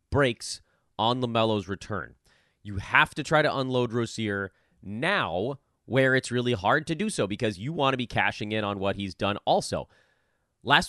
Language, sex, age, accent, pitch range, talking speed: English, male, 30-49, American, 95-130 Hz, 175 wpm